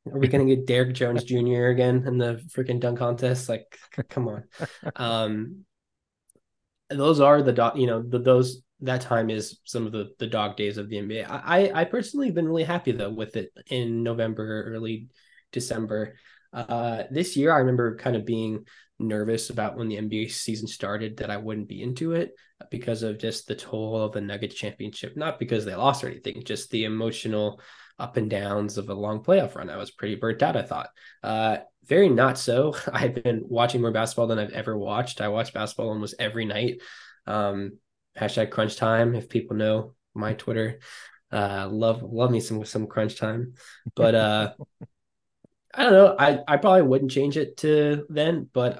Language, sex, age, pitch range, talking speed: English, male, 10-29, 110-125 Hz, 190 wpm